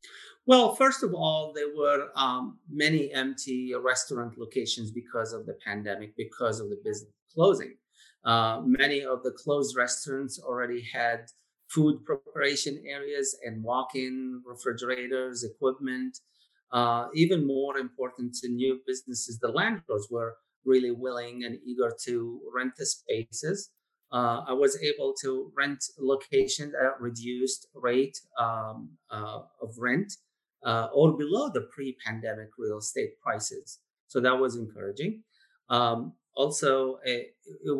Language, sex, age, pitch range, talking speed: English, male, 30-49, 120-145 Hz, 130 wpm